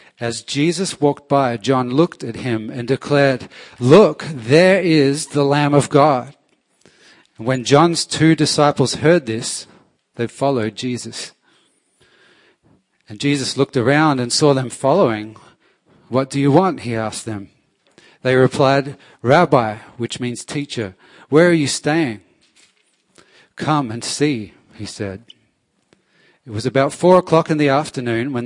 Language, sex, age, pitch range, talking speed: English, male, 40-59, 115-145 Hz, 140 wpm